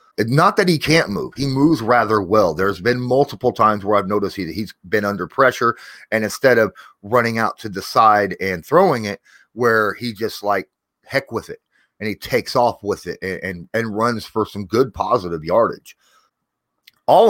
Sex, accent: male, American